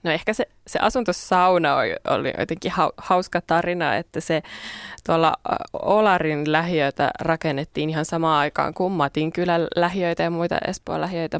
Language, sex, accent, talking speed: Finnish, female, native, 130 wpm